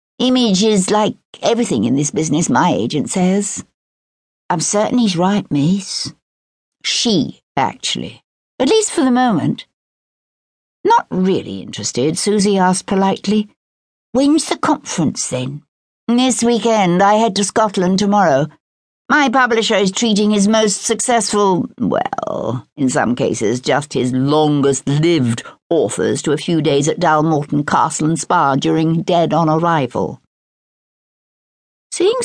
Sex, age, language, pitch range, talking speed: female, 60-79, English, 155-225 Hz, 125 wpm